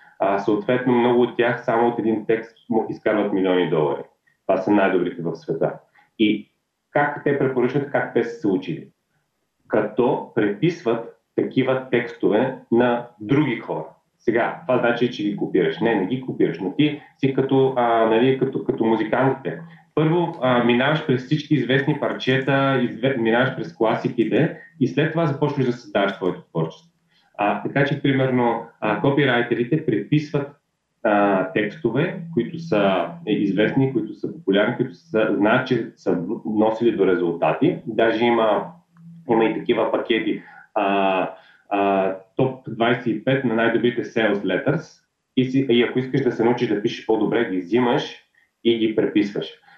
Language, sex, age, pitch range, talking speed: Bulgarian, male, 30-49, 115-140 Hz, 150 wpm